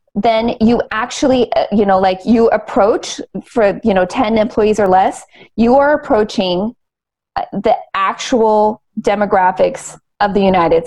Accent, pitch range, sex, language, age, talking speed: American, 205-275 Hz, female, English, 30-49, 135 wpm